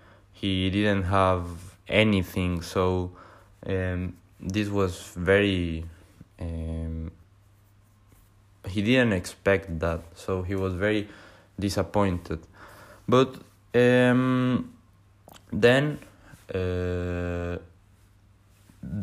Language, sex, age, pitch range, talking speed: English, male, 20-39, 95-105 Hz, 75 wpm